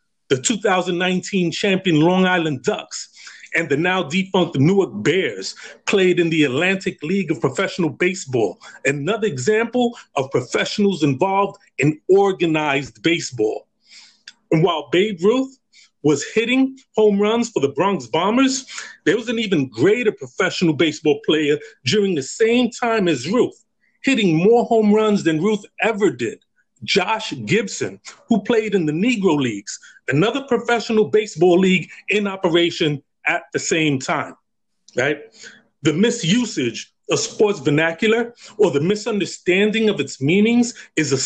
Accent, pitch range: American, 165-225 Hz